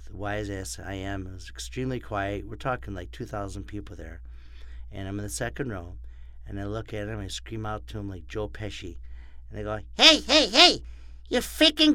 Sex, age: male, 50-69